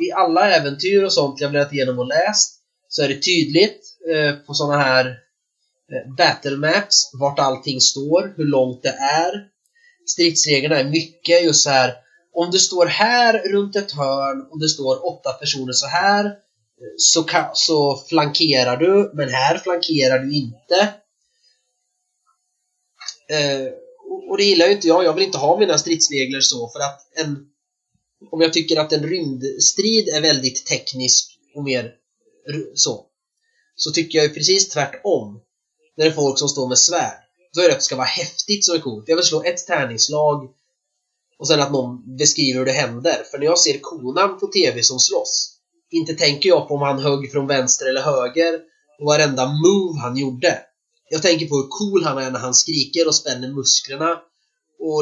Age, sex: 20-39, male